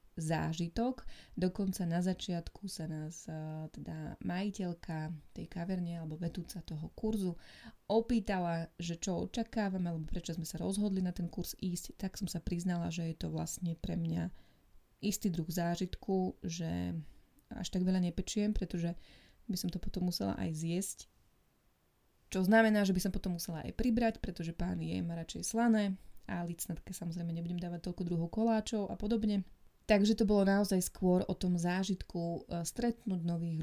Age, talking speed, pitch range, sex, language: 20-39, 155 wpm, 165-200 Hz, female, Slovak